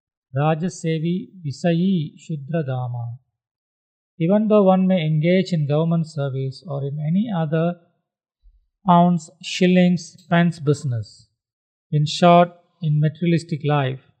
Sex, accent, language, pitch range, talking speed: male, Indian, English, 135-175 Hz, 110 wpm